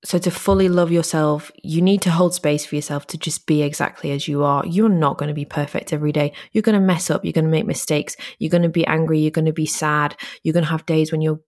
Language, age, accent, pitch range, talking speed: English, 20-39, British, 150-175 Hz, 280 wpm